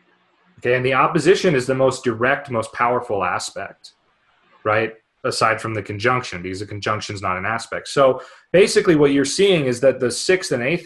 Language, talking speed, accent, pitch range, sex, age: English, 190 wpm, American, 105-160 Hz, male, 30-49